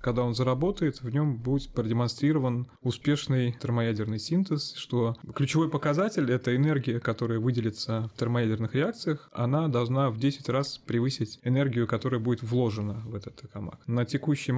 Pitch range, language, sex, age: 115-140 Hz, Russian, male, 20-39